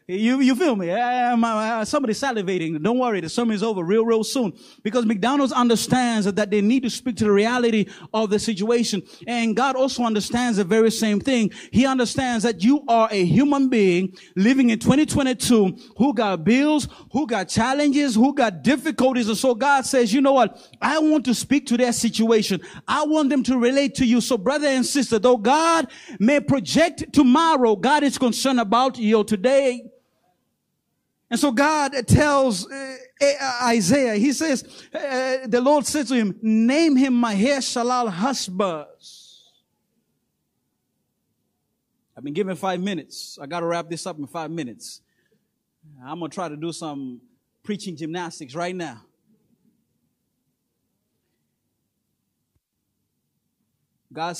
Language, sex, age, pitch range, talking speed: English, male, 30-49, 195-265 Hz, 150 wpm